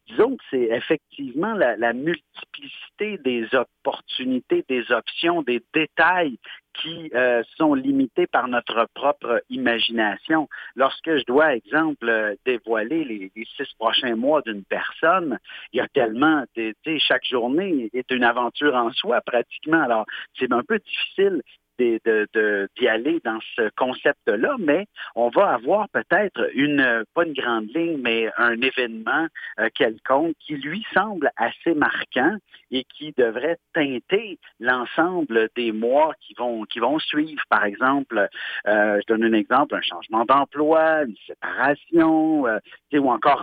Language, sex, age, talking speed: French, male, 50-69, 140 wpm